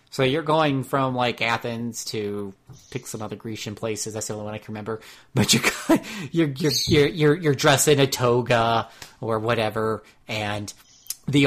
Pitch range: 110-140 Hz